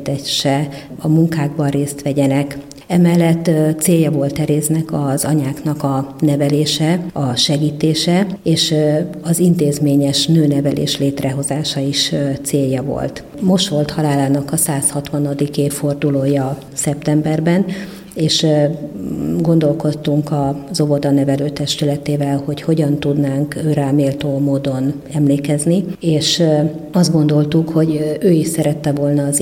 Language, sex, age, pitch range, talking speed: Hungarian, female, 50-69, 140-160 Hz, 100 wpm